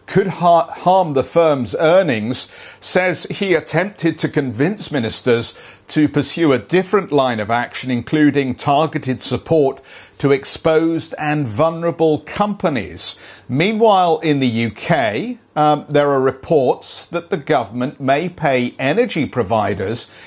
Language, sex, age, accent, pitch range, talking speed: English, male, 50-69, British, 120-165 Hz, 120 wpm